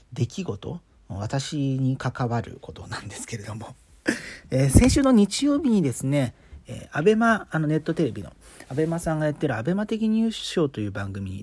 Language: Japanese